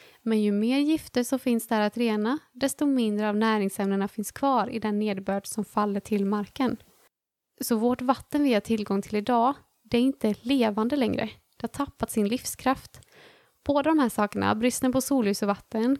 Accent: native